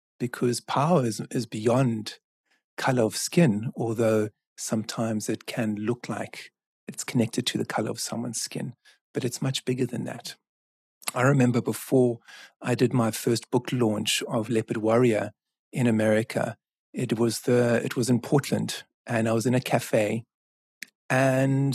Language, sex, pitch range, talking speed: English, male, 110-130 Hz, 155 wpm